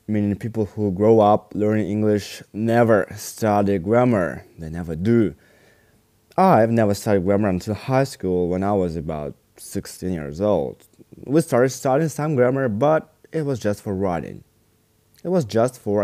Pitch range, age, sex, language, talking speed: 95-115 Hz, 20-39, male, English, 155 wpm